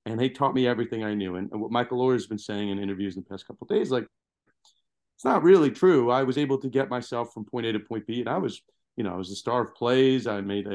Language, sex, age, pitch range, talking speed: English, male, 30-49, 105-135 Hz, 295 wpm